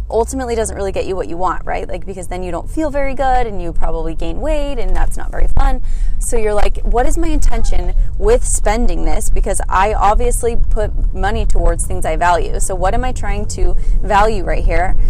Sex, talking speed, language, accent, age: female, 220 wpm, English, American, 20-39